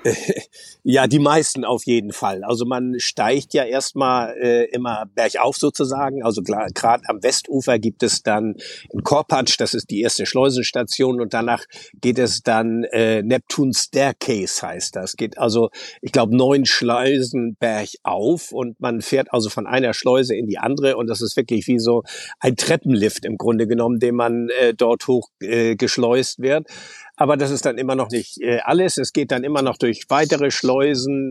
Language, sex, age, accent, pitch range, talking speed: German, male, 50-69, German, 120-140 Hz, 180 wpm